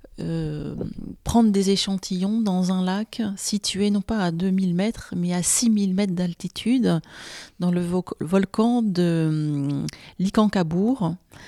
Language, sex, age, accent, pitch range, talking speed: French, female, 40-59, French, 170-200 Hz, 125 wpm